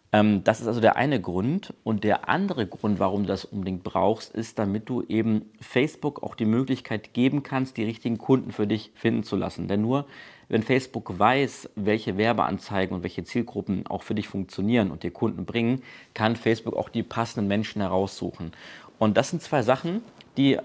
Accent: German